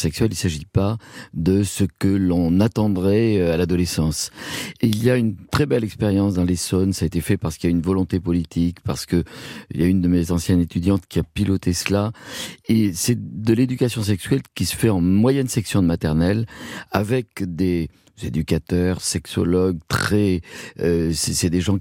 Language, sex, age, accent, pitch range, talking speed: French, male, 50-69, French, 90-115 Hz, 190 wpm